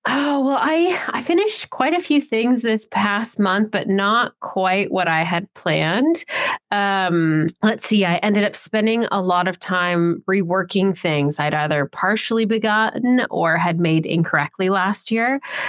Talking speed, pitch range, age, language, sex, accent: 160 wpm, 165-210 Hz, 20-39, English, female, American